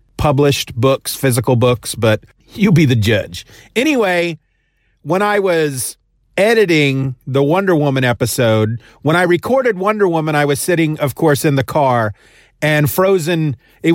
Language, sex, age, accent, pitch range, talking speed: English, male, 40-59, American, 120-165 Hz, 145 wpm